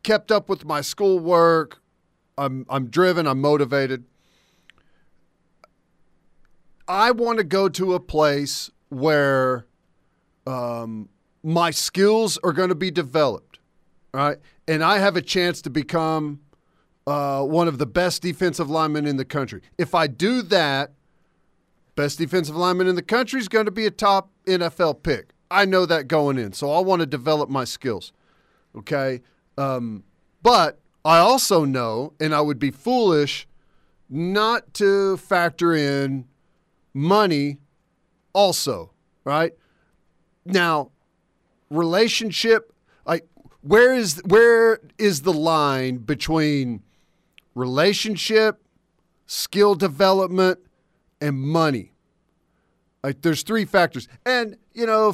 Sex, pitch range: male, 145-190 Hz